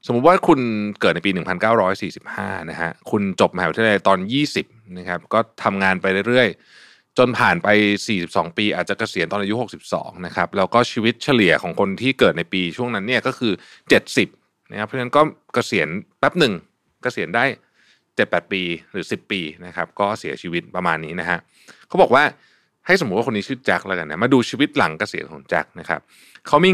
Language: Thai